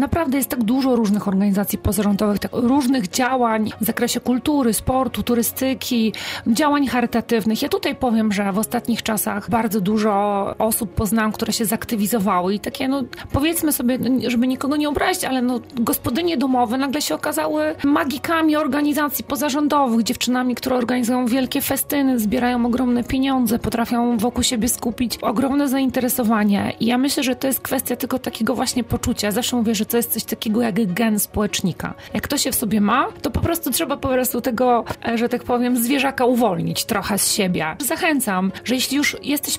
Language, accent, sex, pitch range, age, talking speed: Polish, native, female, 220-265 Hz, 30-49, 165 wpm